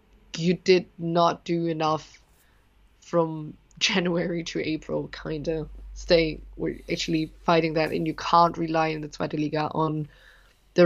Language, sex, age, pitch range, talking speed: English, female, 20-39, 160-185 Hz, 145 wpm